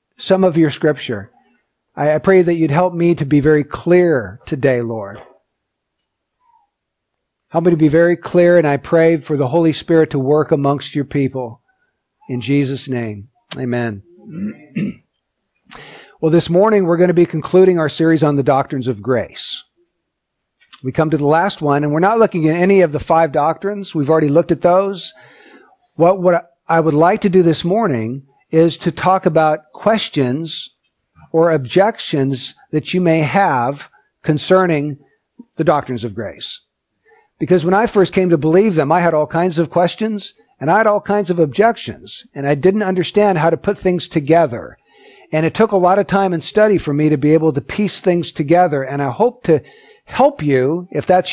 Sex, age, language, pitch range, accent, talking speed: male, 50-69, English, 150-190 Hz, American, 180 wpm